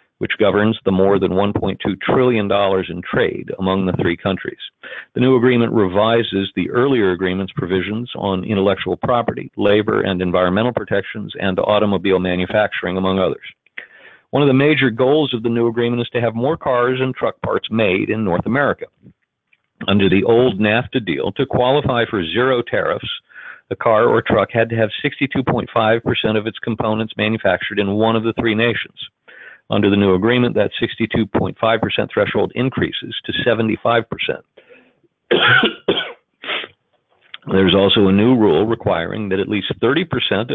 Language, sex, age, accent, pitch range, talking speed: English, male, 50-69, American, 95-115 Hz, 150 wpm